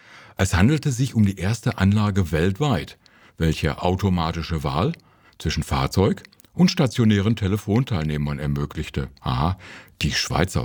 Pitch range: 80-110 Hz